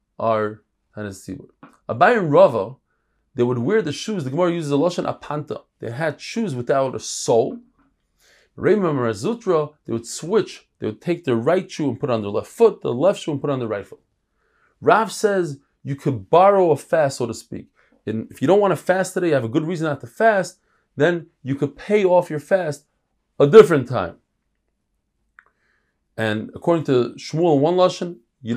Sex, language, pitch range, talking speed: male, English, 130-185 Hz, 195 wpm